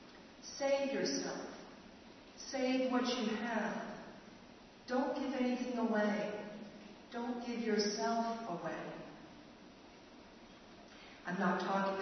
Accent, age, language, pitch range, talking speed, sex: American, 50-69, English, 220-250 Hz, 85 wpm, female